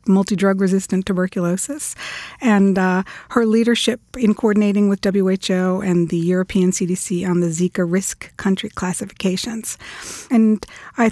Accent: American